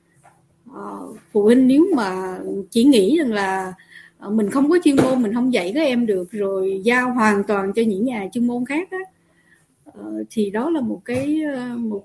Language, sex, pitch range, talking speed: Vietnamese, female, 200-280 Hz, 185 wpm